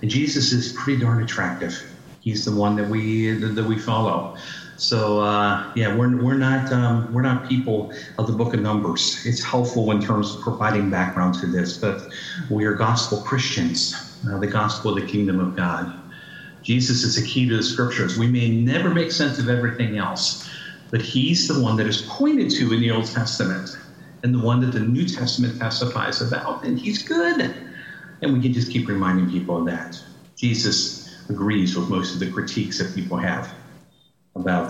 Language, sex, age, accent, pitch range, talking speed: English, male, 50-69, American, 95-125 Hz, 190 wpm